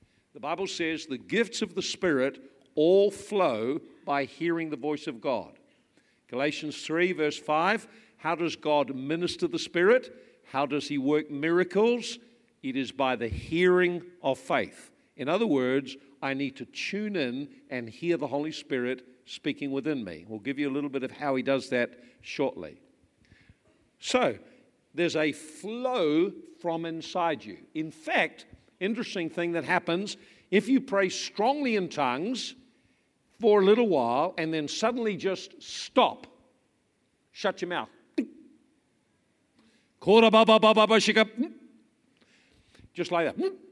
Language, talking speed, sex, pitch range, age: English, 135 wpm, male, 150-225 Hz, 50-69